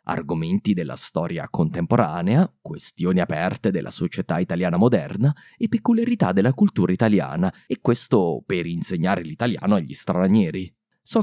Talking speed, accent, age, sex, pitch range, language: 125 wpm, native, 30-49, male, 85-120 Hz, Italian